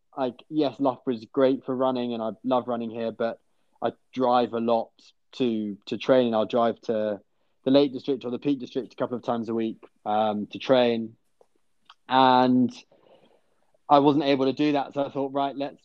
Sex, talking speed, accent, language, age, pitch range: male, 195 wpm, British, English, 20-39, 110-130 Hz